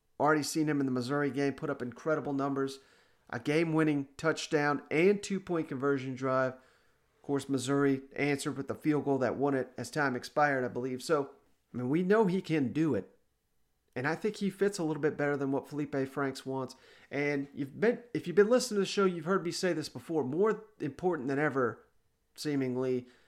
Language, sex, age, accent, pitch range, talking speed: English, male, 40-59, American, 130-155 Hz, 200 wpm